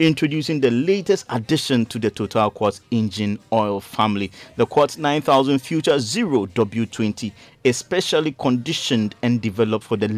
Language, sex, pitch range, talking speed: English, male, 110-135 Hz, 135 wpm